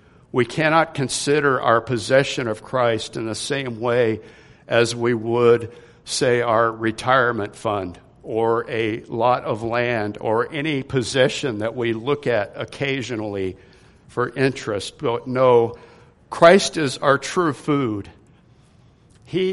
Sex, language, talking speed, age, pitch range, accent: male, English, 125 wpm, 60-79, 115-140 Hz, American